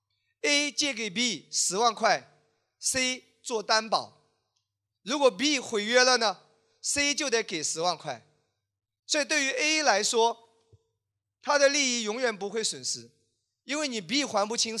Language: Chinese